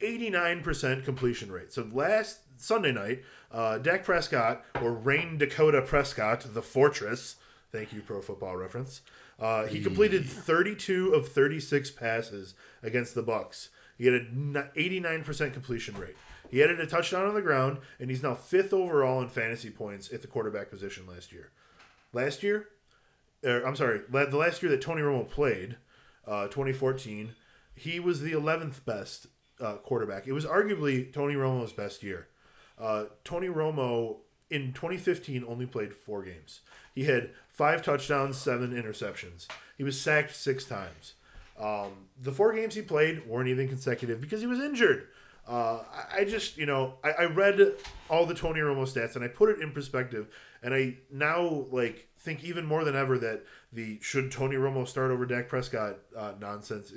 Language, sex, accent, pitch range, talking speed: English, male, American, 115-160 Hz, 170 wpm